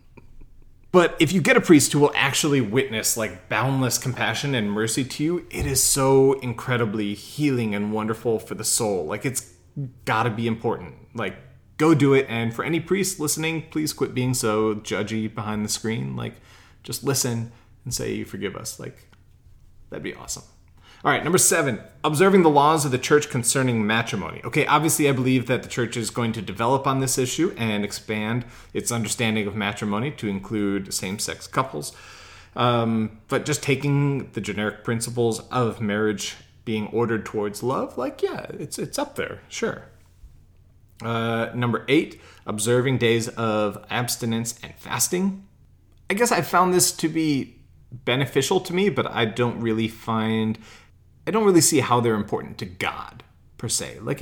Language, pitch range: English, 105-140 Hz